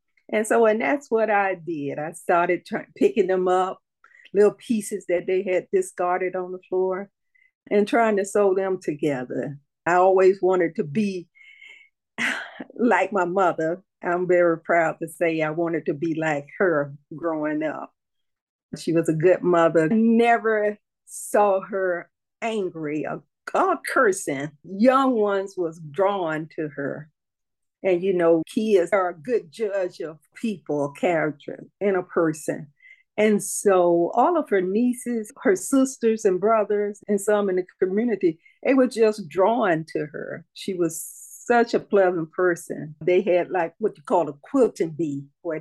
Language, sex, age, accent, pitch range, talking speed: English, female, 50-69, American, 165-215 Hz, 155 wpm